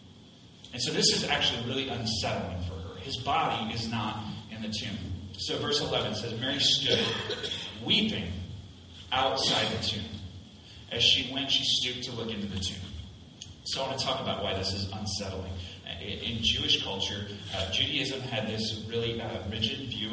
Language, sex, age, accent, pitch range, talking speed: English, male, 30-49, American, 100-145 Hz, 170 wpm